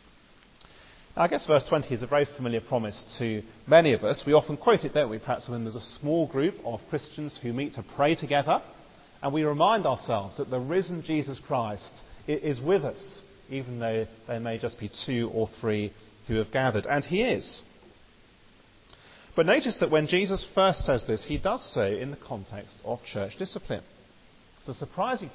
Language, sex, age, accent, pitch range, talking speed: English, male, 40-59, British, 110-150 Hz, 185 wpm